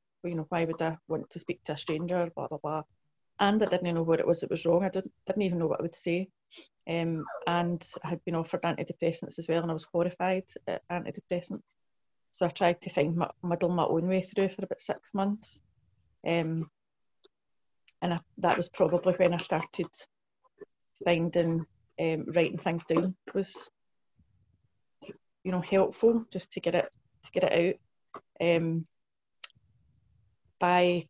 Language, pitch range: English, 165-185 Hz